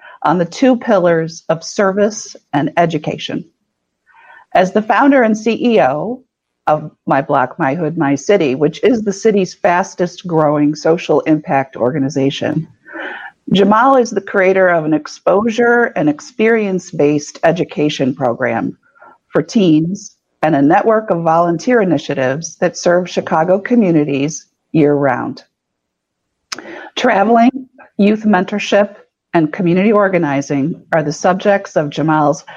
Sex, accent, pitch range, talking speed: female, American, 155-210 Hz, 120 wpm